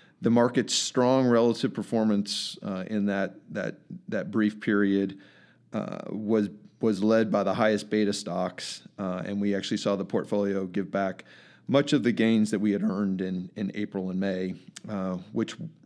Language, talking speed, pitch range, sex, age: English, 170 wpm, 100-115 Hz, male, 40-59